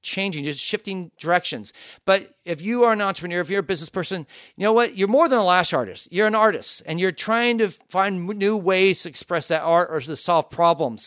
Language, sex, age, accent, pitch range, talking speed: English, male, 40-59, American, 170-220 Hz, 230 wpm